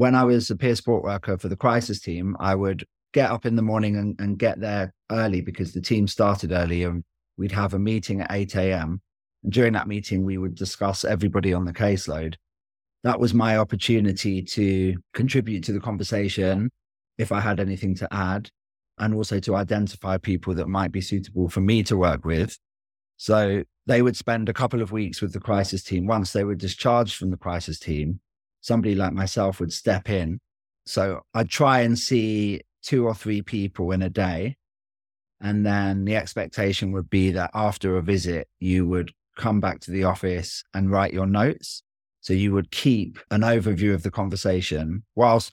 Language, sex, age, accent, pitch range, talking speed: English, male, 30-49, British, 90-105 Hz, 190 wpm